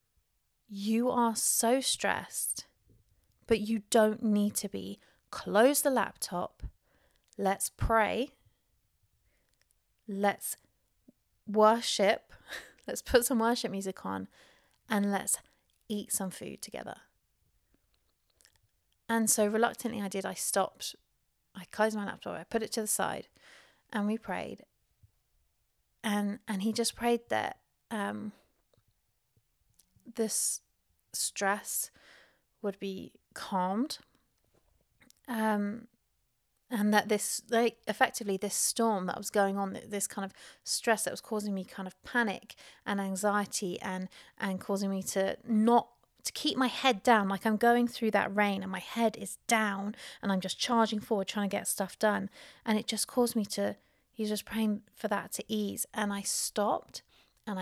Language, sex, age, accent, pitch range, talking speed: English, female, 30-49, British, 195-230 Hz, 140 wpm